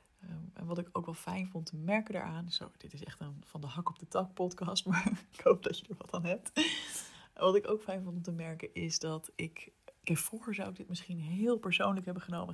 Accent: Dutch